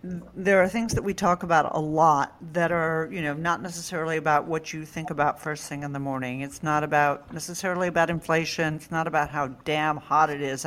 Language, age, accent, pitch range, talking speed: English, 50-69, American, 150-185 Hz, 220 wpm